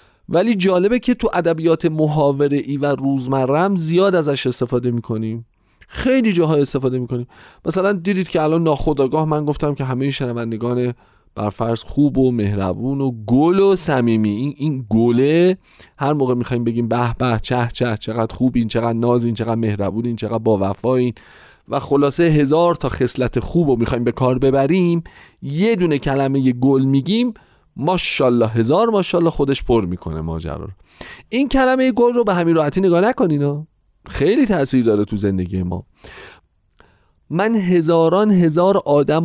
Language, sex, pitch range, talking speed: Persian, male, 115-160 Hz, 155 wpm